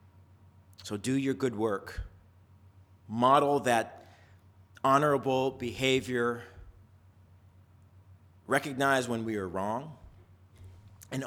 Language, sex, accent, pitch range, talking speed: English, male, American, 95-125 Hz, 80 wpm